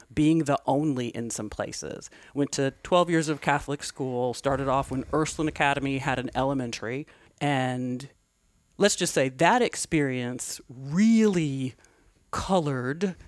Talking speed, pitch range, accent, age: 130 wpm, 130-155 Hz, American, 40-59